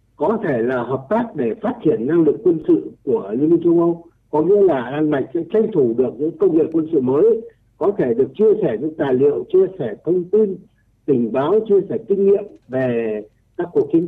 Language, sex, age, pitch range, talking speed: Vietnamese, male, 60-79, 140-235 Hz, 225 wpm